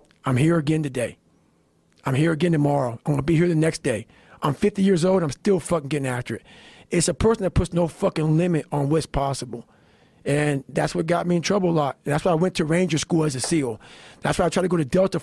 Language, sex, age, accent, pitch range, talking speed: English, male, 40-59, American, 140-180 Hz, 255 wpm